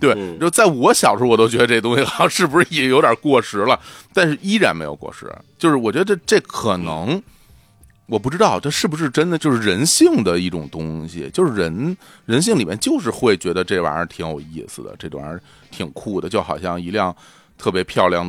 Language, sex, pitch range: Chinese, male, 90-130 Hz